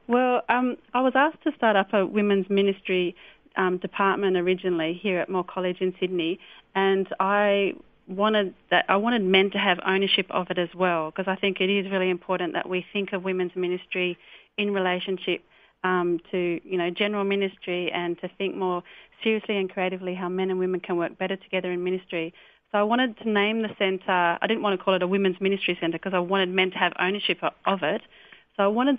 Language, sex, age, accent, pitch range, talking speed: English, female, 30-49, Australian, 180-200 Hz, 210 wpm